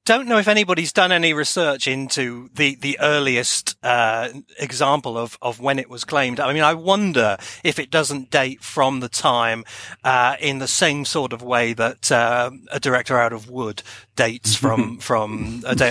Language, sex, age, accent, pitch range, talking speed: English, male, 40-59, British, 115-140 Hz, 185 wpm